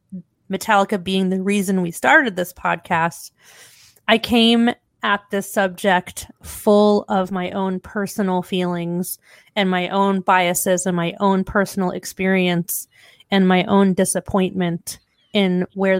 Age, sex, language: 30-49, female, English